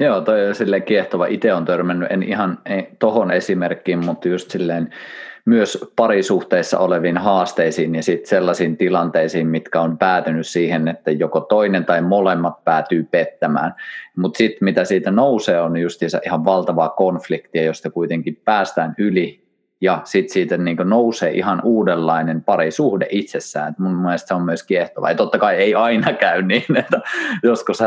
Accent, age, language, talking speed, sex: native, 30-49, Finnish, 155 wpm, male